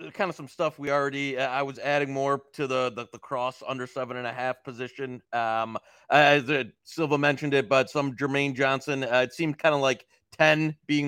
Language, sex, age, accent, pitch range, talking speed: English, male, 30-49, American, 125-150 Hz, 215 wpm